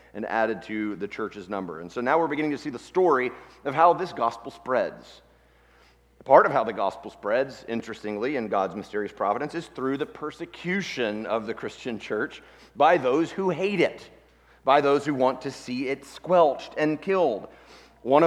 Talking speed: 180 wpm